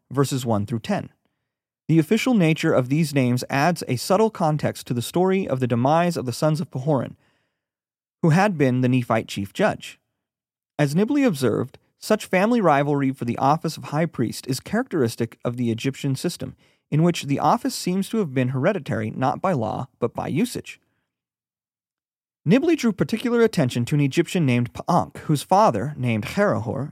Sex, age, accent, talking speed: male, 30-49, American, 175 wpm